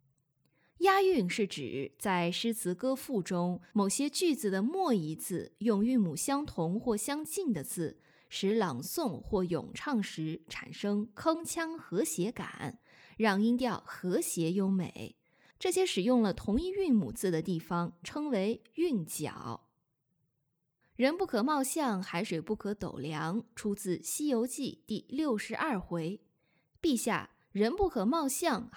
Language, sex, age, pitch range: Chinese, female, 20-39, 180-265 Hz